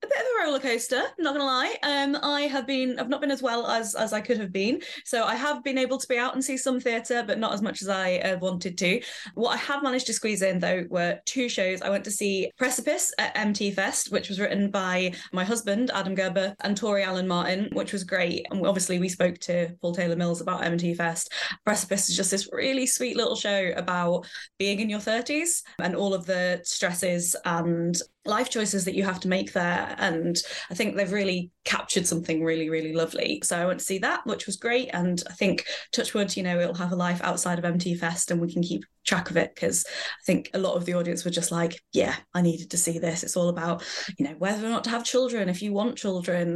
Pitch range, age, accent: 175-230 Hz, 20-39, British